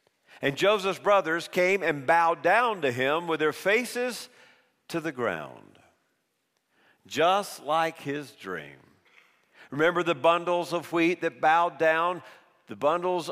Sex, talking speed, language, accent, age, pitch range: male, 130 wpm, English, American, 50-69, 135-175 Hz